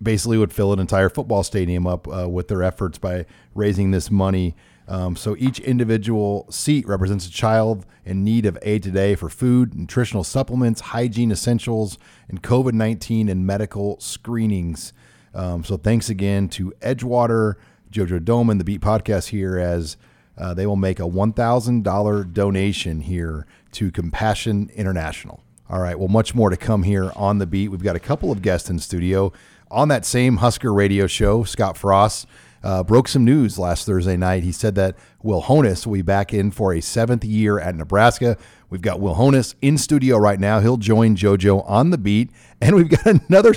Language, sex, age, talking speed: English, male, 40-59, 180 wpm